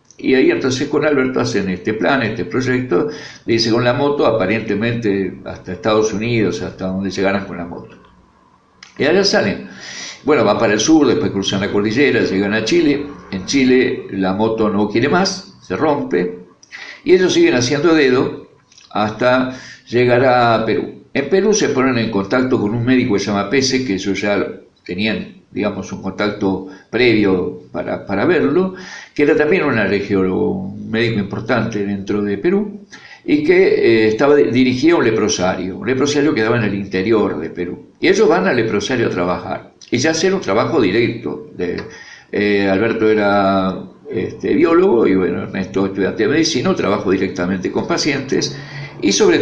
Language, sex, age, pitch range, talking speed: Spanish, male, 60-79, 95-130 Hz, 170 wpm